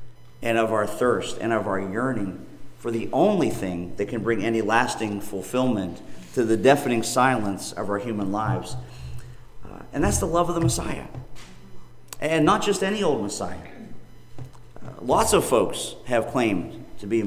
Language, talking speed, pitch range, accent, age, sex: English, 170 wpm, 110-130 Hz, American, 40-59, male